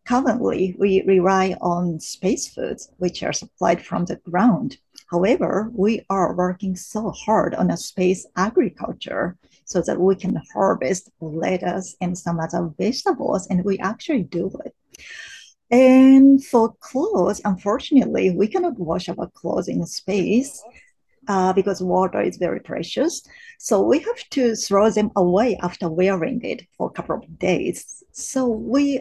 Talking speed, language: 145 wpm, English